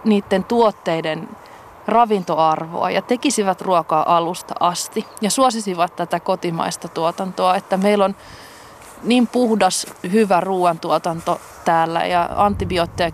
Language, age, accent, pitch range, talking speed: Finnish, 30-49, native, 180-215 Hz, 105 wpm